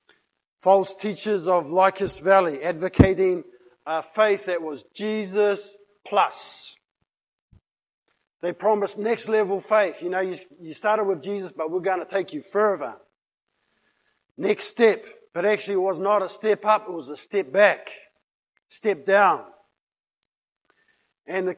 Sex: male